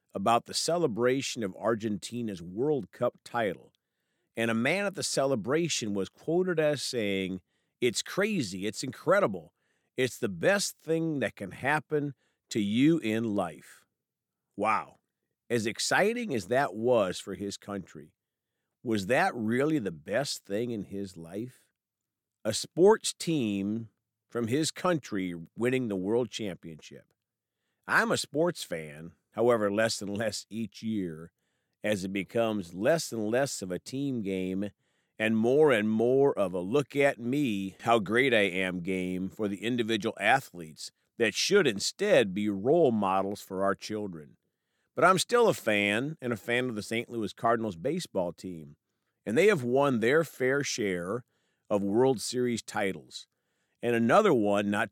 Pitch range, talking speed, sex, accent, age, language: 100-125 Hz, 145 wpm, male, American, 50-69, English